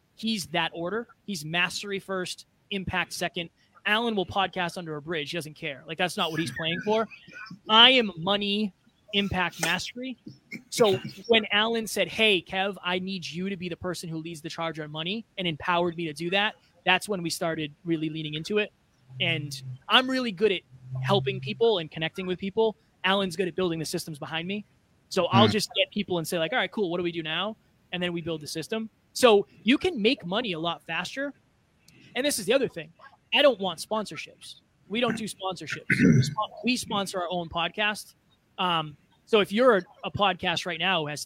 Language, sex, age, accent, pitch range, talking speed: English, male, 20-39, American, 165-210 Hz, 200 wpm